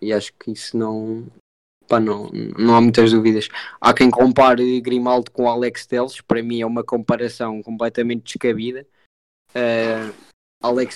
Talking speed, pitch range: 150 wpm, 115-130 Hz